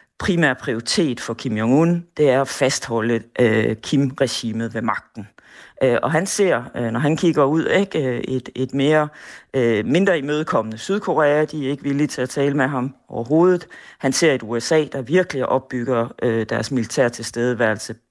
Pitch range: 125-155 Hz